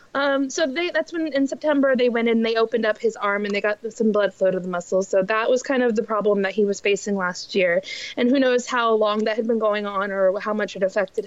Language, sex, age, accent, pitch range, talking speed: English, female, 20-39, American, 205-270 Hz, 275 wpm